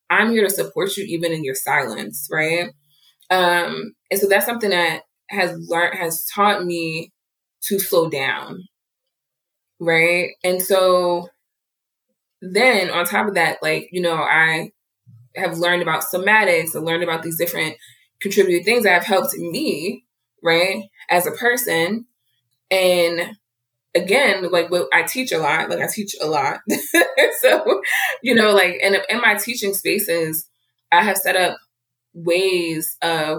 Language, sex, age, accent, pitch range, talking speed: English, female, 20-39, American, 160-195 Hz, 150 wpm